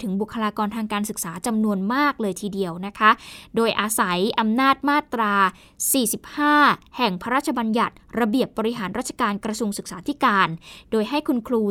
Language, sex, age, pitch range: Thai, female, 10-29, 205-260 Hz